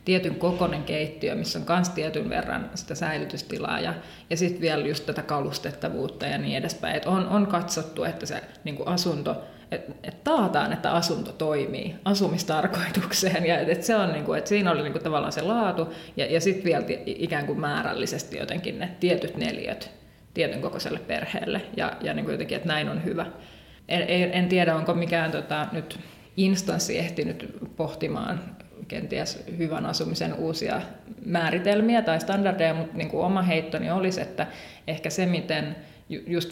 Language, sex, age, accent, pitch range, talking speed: Finnish, female, 30-49, native, 160-185 Hz, 150 wpm